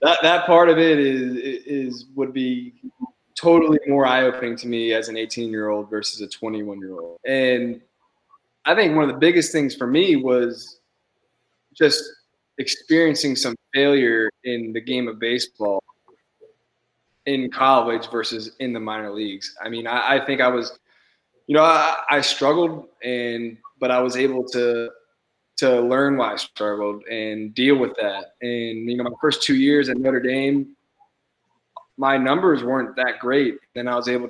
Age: 20-39